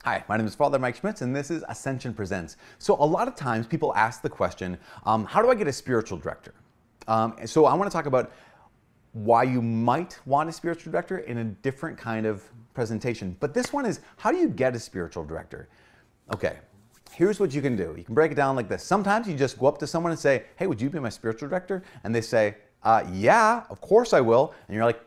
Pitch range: 110-150 Hz